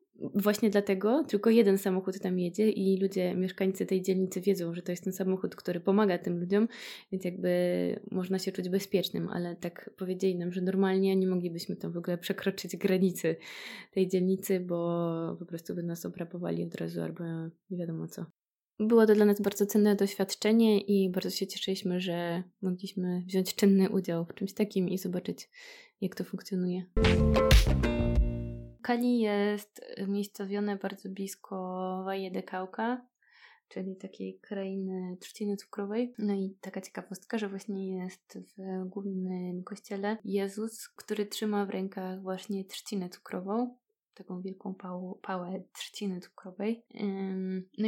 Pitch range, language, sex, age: 185-205 Hz, Polish, female, 20-39